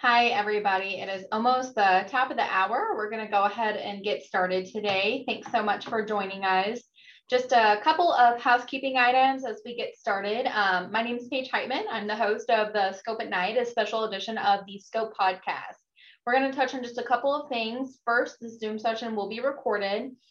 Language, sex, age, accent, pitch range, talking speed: English, female, 20-39, American, 205-250 Hz, 215 wpm